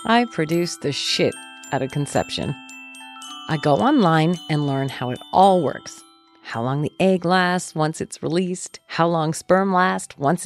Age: 40-59